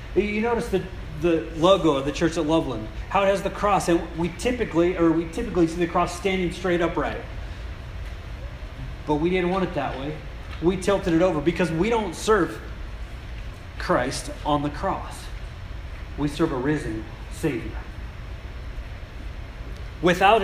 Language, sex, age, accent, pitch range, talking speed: English, male, 30-49, American, 135-175 Hz, 145 wpm